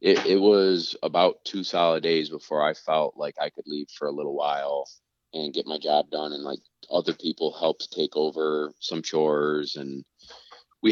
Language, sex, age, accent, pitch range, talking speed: English, male, 20-39, American, 80-100 Hz, 185 wpm